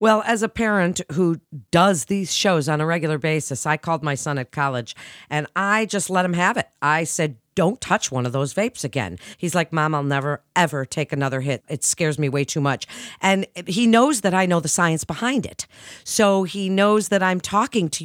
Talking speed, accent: 220 wpm, American